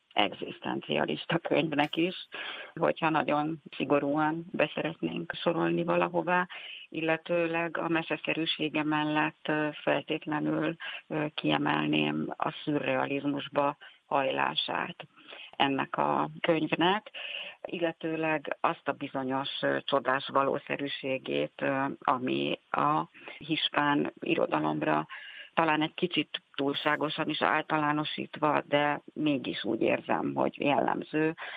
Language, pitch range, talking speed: Hungarian, 135-155 Hz, 80 wpm